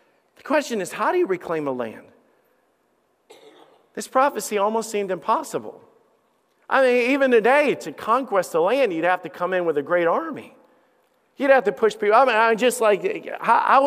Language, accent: English, American